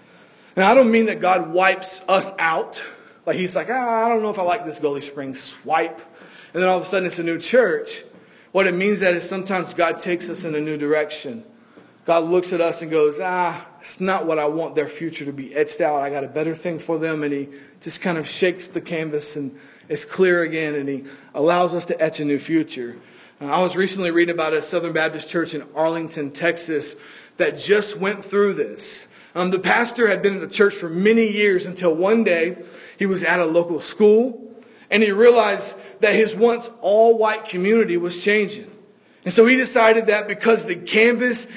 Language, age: English, 40-59